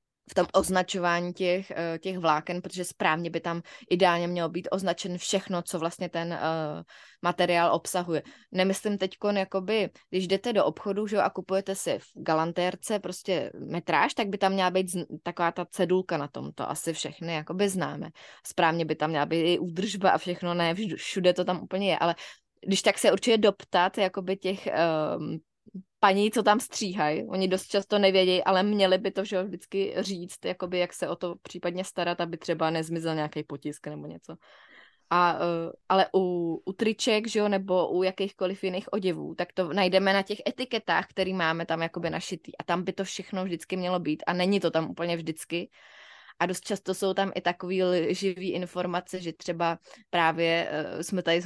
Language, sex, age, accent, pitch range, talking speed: Czech, female, 20-39, native, 170-190 Hz, 180 wpm